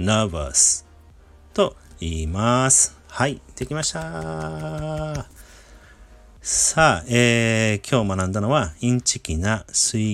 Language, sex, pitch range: Japanese, male, 80-120 Hz